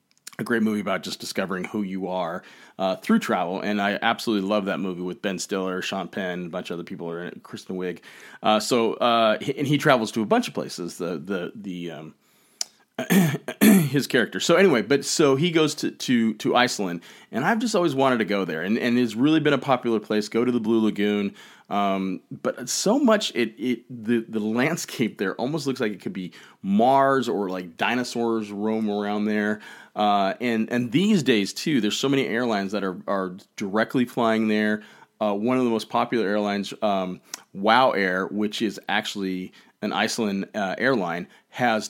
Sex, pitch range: male, 100-130 Hz